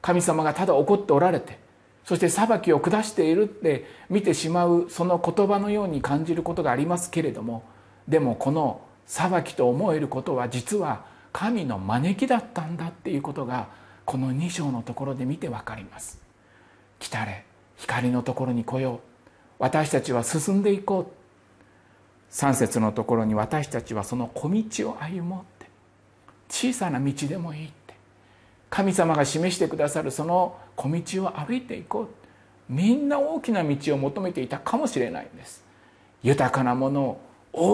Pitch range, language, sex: 120-180 Hz, Japanese, male